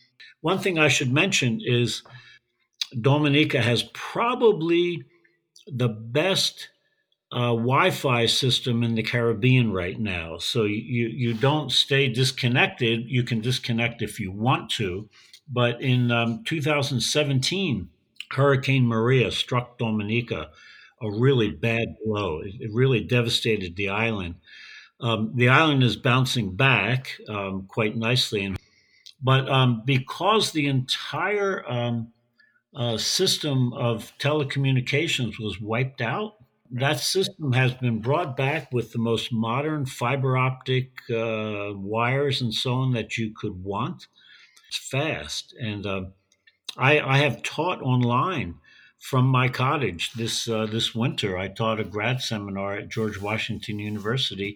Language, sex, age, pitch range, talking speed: English, male, 60-79, 110-135 Hz, 130 wpm